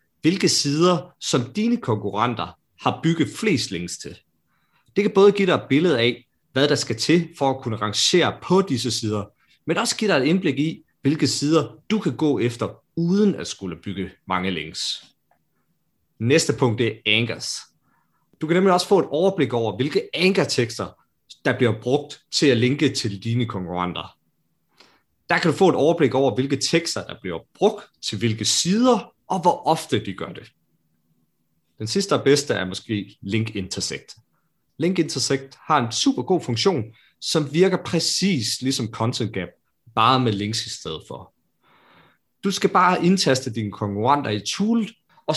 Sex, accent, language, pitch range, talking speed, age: male, native, Danish, 105-165 Hz, 170 wpm, 30-49